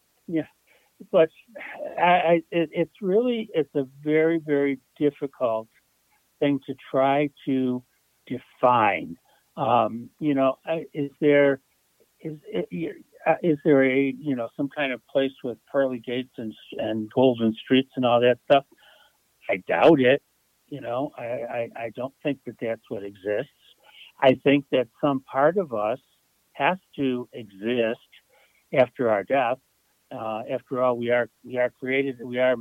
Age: 60-79